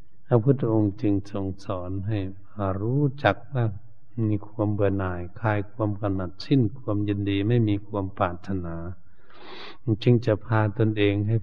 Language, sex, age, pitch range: Thai, male, 60-79, 100-120 Hz